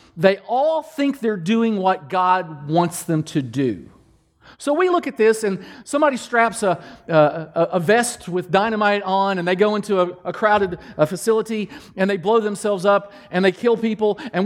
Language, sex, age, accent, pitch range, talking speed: English, male, 40-59, American, 185-250 Hz, 185 wpm